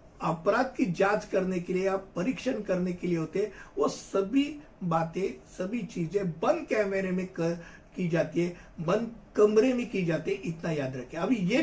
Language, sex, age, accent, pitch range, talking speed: Hindi, male, 60-79, native, 170-245 Hz, 180 wpm